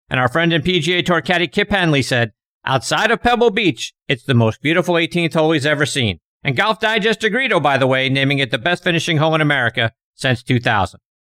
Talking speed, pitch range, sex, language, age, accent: 220 wpm, 130-190 Hz, male, English, 50-69, American